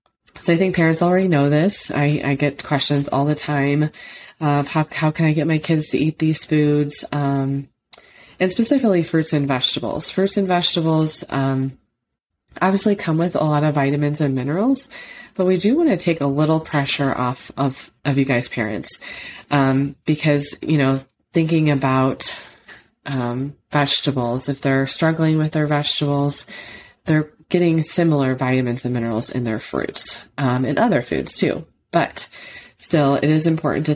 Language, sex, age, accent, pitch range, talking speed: English, female, 30-49, American, 135-160 Hz, 165 wpm